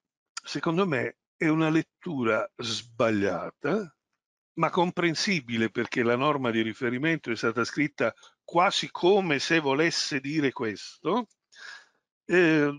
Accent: native